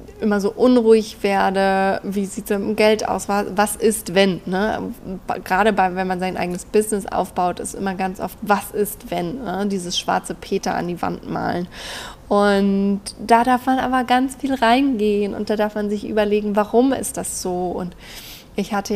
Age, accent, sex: 20-39, German, female